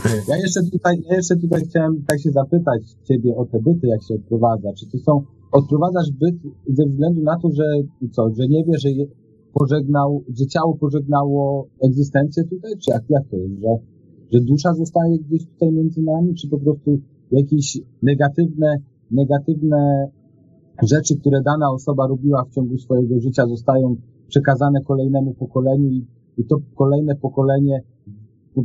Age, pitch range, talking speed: 40-59, 125-145 Hz, 155 wpm